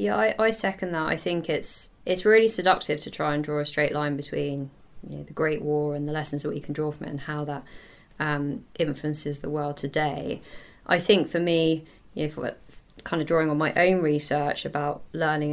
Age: 20-39